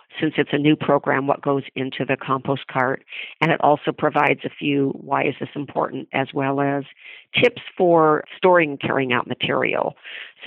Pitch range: 140-170 Hz